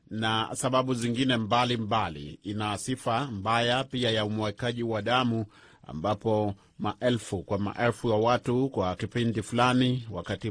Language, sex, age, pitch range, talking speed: Swahili, male, 40-59, 100-125 Hz, 130 wpm